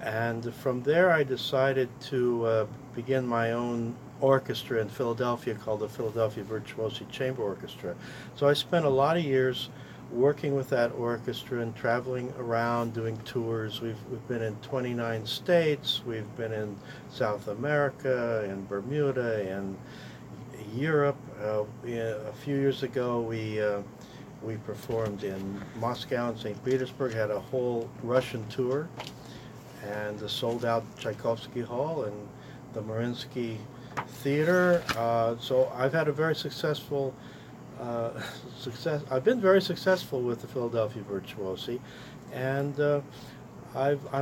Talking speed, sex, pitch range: 135 wpm, male, 115-135 Hz